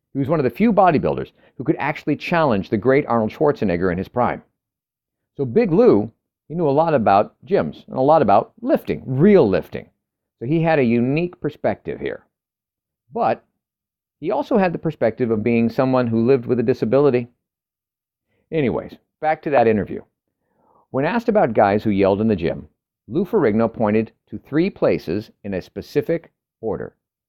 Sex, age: male, 50-69